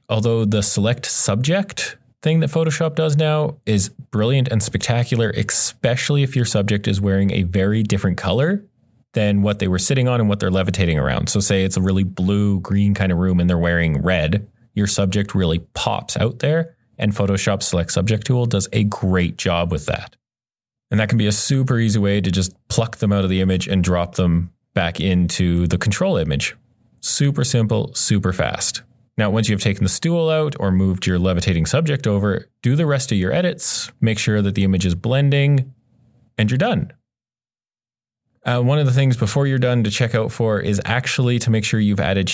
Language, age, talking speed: English, 30-49, 200 wpm